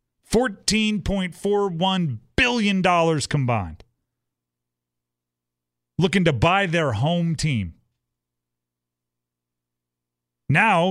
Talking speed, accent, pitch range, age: 60 wpm, American, 110-175 Hz, 30-49